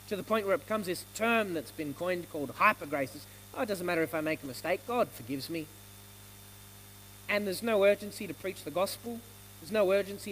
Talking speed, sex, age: 210 wpm, male, 30-49